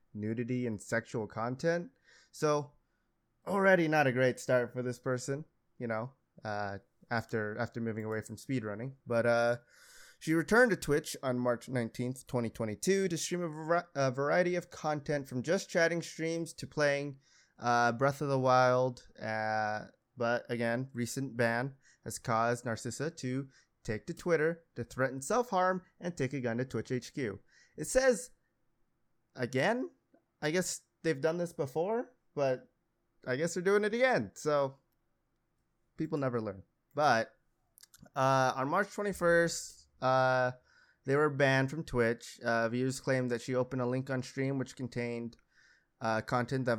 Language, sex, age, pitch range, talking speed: English, male, 20-39, 115-155 Hz, 150 wpm